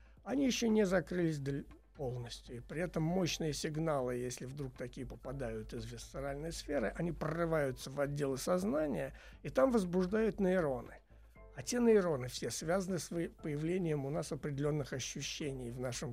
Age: 60-79